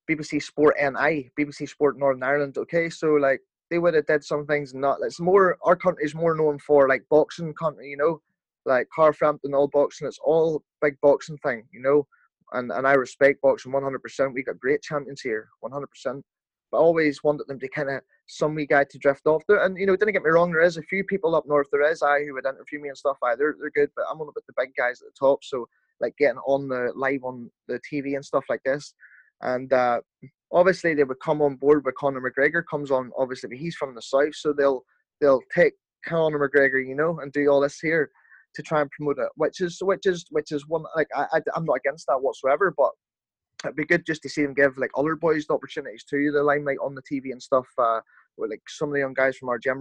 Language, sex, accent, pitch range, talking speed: English, male, British, 135-160 Hz, 250 wpm